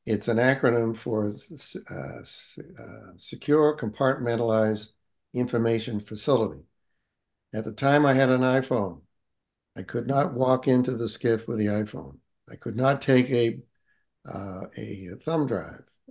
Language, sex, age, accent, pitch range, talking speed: English, male, 60-79, American, 115-140 Hz, 135 wpm